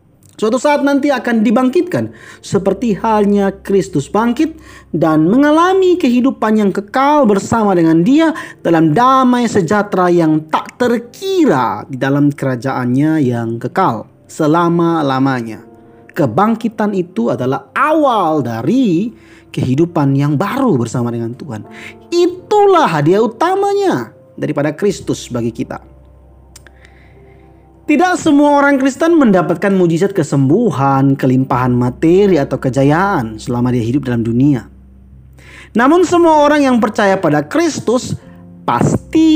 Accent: native